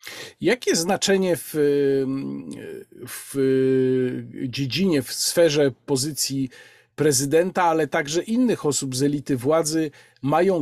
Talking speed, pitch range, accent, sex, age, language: 95 wpm, 150-190 Hz, native, male, 40-59, Polish